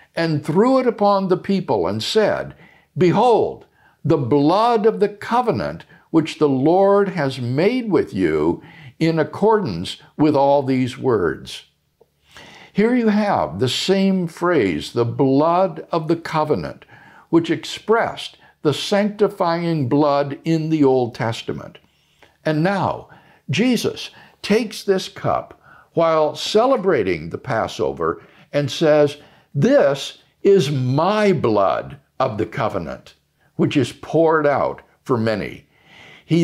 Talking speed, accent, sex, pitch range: 120 wpm, American, male, 140-195 Hz